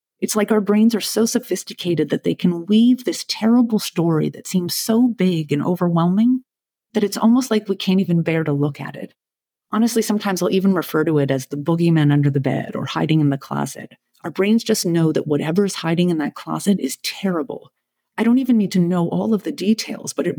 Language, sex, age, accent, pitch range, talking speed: English, female, 40-59, American, 170-215 Hz, 220 wpm